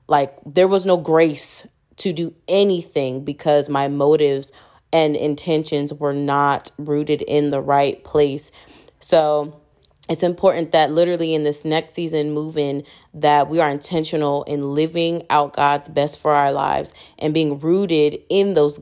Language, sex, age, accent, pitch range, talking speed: English, female, 20-39, American, 145-160 Hz, 150 wpm